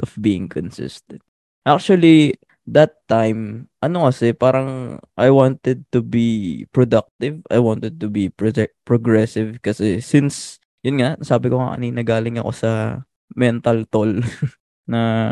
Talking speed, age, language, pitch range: 135 wpm, 20-39, Filipino, 110-130 Hz